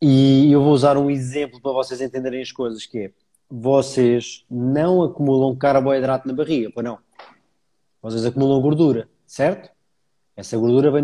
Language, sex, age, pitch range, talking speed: Portuguese, male, 20-39, 130-165 Hz, 150 wpm